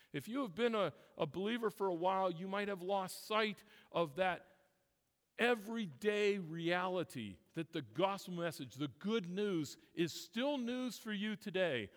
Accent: American